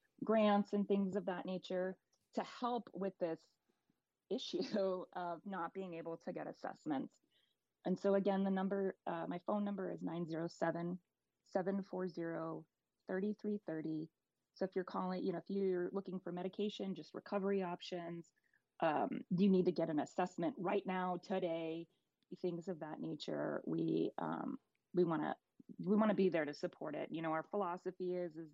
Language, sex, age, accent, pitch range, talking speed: English, female, 30-49, American, 170-195 Hz, 160 wpm